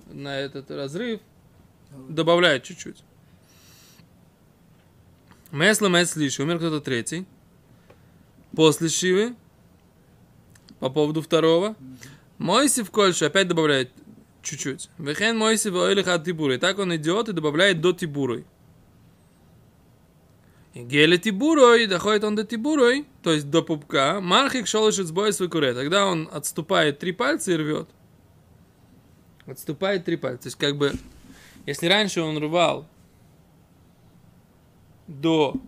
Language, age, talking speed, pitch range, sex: Russian, 20-39, 115 wpm, 140-190 Hz, male